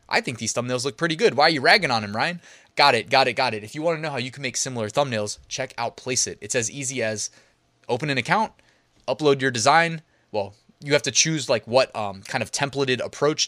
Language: English